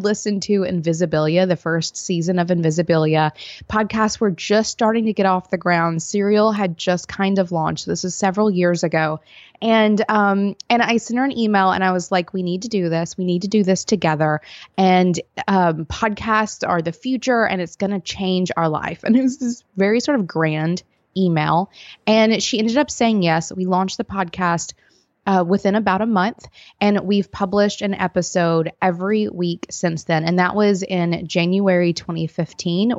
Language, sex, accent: English, female, American